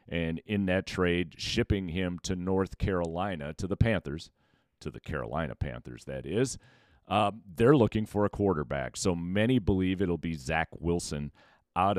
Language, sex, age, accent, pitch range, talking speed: English, male, 40-59, American, 80-110 Hz, 160 wpm